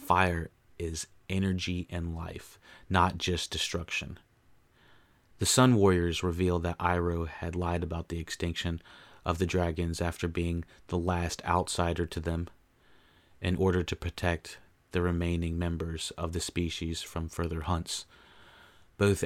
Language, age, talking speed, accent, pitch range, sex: English, 30-49, 135 wpm, American, 85-95 Hz, male